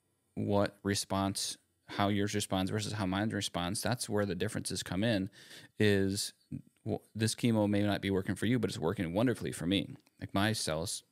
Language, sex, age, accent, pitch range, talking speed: English, male, 30-49, American, 95-110 Hz, 180 wpm